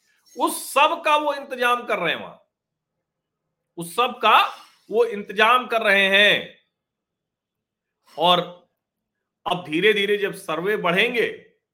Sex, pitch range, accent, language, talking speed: male, 170-250 Hz, native, Hindi, 125 wpm